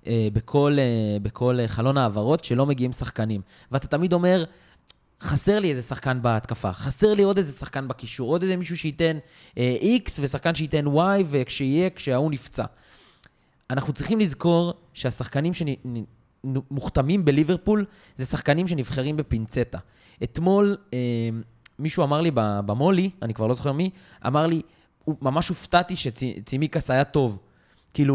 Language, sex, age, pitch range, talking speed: Hebrew, male, 20-39, 120-165 Hz, 130 wpm